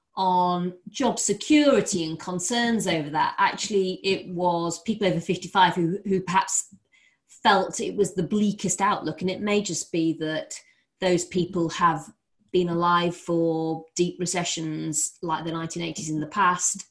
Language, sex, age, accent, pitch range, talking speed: English, female, 30-49, British, 165-200 Hz, 150 wpm